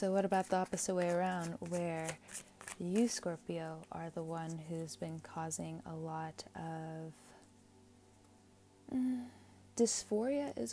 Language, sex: English, female